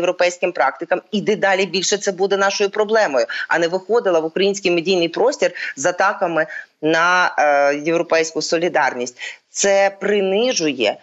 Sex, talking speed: female, 130 wpm